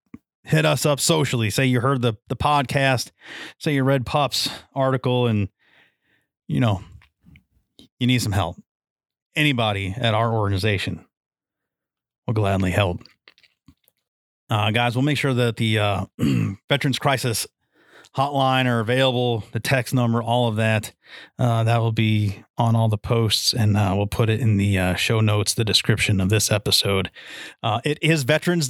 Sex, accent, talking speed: male, American, 155 wpm